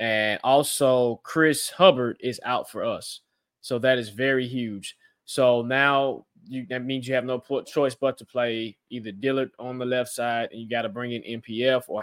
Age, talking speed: 20-39, 195 wpm